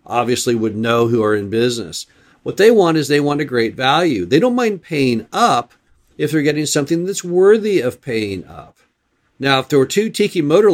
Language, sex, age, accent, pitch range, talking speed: English, male, 50-69, American, 115-150 Hz, 205 wpm